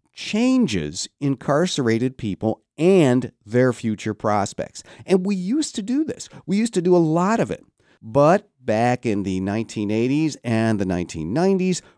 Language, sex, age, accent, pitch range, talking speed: English, male, 50-69, American, 115-165 Hz, 145 wpm